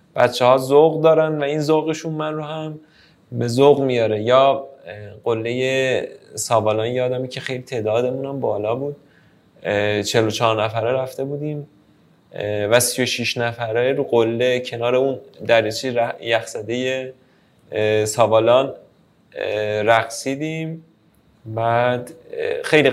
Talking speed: 115 wpm